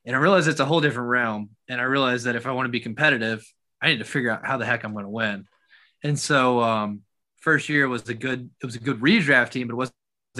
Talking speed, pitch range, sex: 270 wpm, 115-140 Hz, male